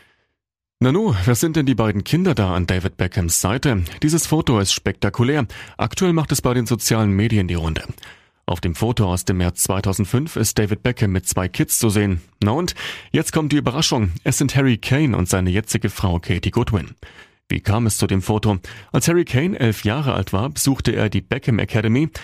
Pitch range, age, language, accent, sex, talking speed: 95-125 Hz, 30-49, German, German, male, 200 wpm